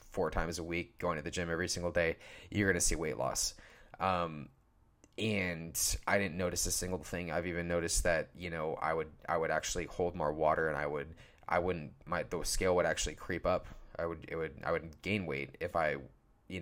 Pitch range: 80-95 Hz